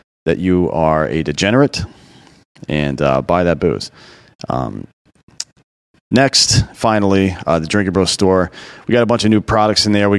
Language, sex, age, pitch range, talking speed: English, male, 30-49, 75-95 Hz, 165 wpm